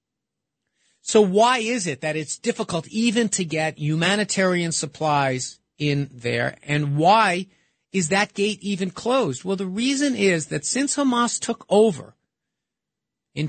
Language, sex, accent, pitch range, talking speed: English, male, American, 160-210 Hz, 140 wpm